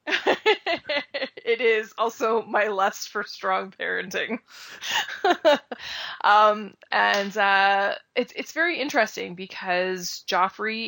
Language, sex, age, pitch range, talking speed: English, female, 20-39, 175-205 Hz, 95 wpm